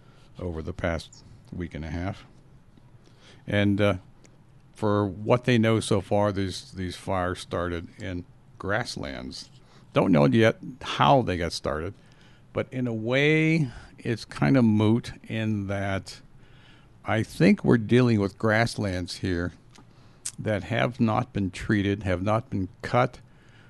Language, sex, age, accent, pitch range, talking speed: English, male, 60-79, American, 95-125 Hz, 135 wpm